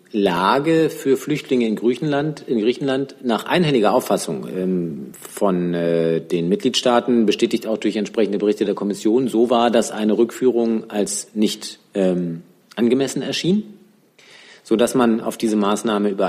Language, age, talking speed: German, 40-59, 135 wpm